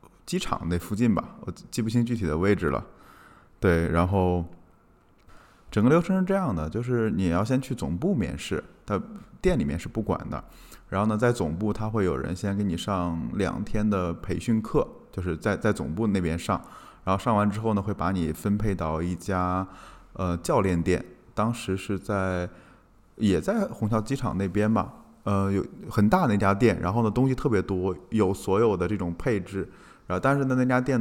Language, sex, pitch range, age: Chinese, male, 85-105 Hz, 20-39